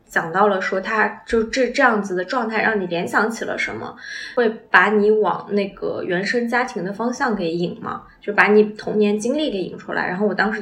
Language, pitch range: Chinese, 195-240 Hz